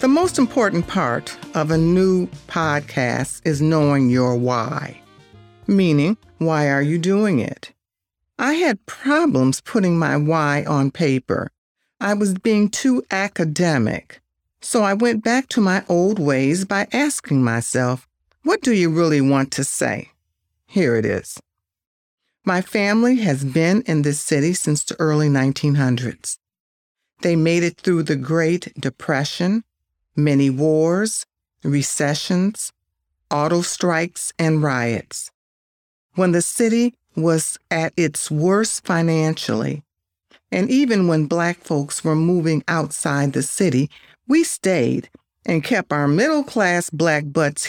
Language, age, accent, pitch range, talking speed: English, 50-69, American, 135-190 Hz, 130 wpm